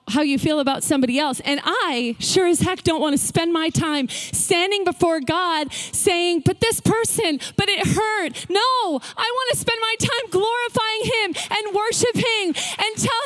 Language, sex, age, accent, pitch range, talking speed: English, female, 30-49, American, 265-360 Hz, 180 wpm